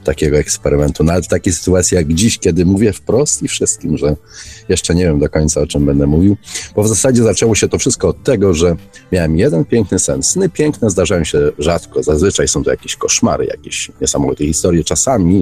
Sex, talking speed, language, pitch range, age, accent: male, 200 wpm, Polish, 75-90 Hz, 40-59, native